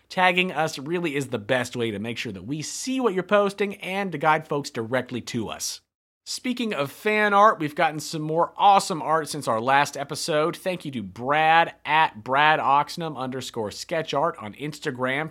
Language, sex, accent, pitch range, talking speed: English, male, American, 125-170 Hz, 190 wpm